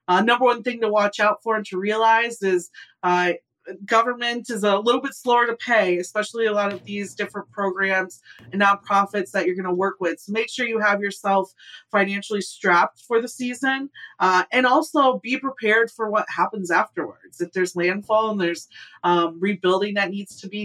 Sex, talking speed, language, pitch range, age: female, 195 wpm, English, 185-225 Hz, 30-49